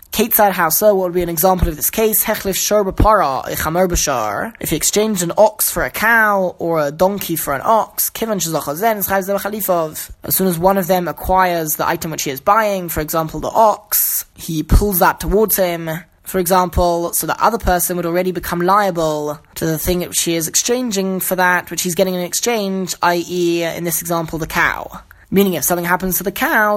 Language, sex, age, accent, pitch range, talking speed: English, male, 20-39, British, 175-210 Hz, 195 wpm